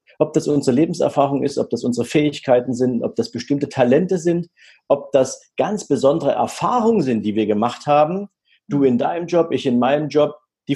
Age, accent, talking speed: 40-59, German, 190 wpm